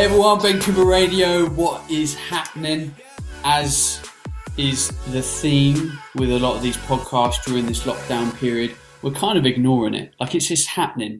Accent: British